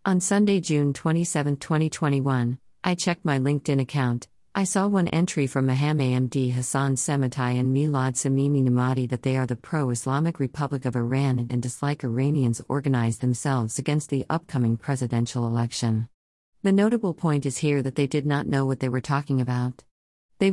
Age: 50-69